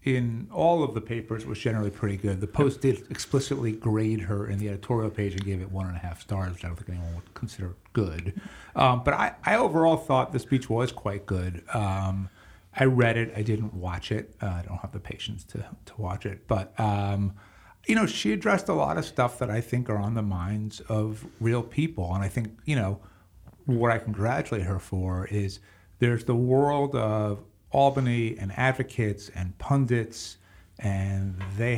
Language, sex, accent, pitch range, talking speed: English, male, American, 95-120 Hz, 200 wpm